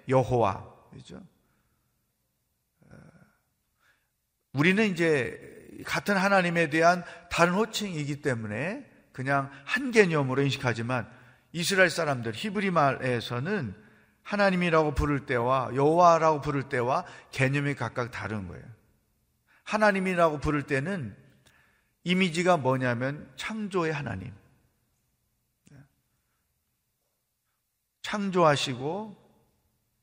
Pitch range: 125-175 Hz